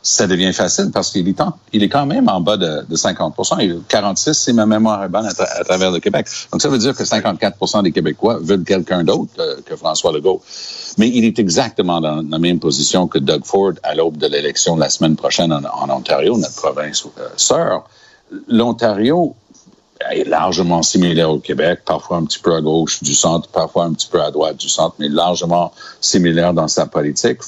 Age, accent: 50-69, Canadian